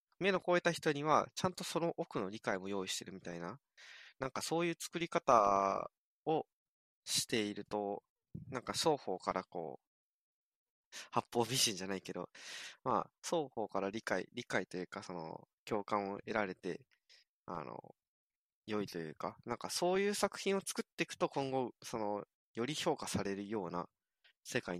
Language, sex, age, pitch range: Japanese, male, 20-39, 95-145 Hz